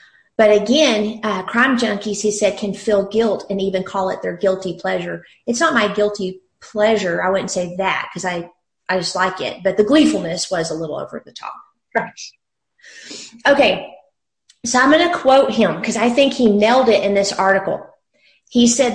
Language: English